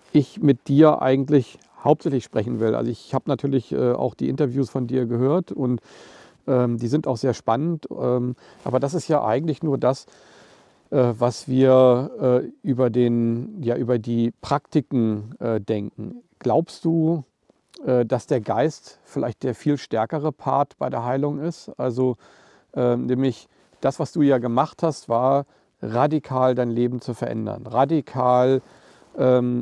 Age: 50-69